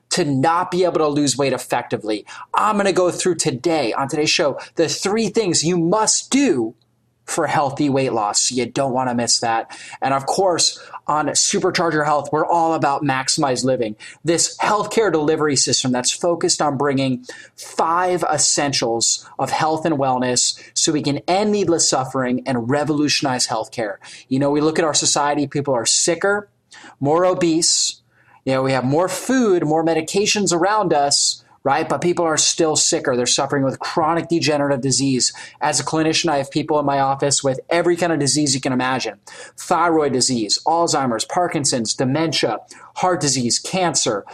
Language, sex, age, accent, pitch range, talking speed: English, male, 30-49, American, 135-170 Hz, 170 wpm